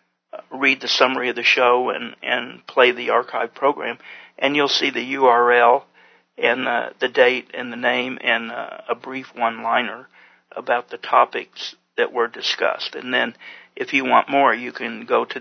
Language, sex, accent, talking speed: English, male, American, 175 wpm